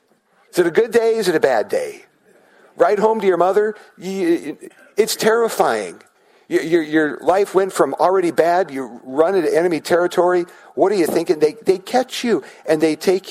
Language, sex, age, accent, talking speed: English, male, 50-69, American, 170 wpm